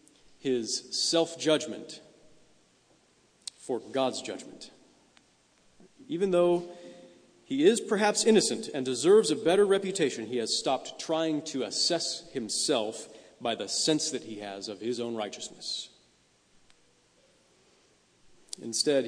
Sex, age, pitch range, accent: male, 40-59, 115-150 Hz, American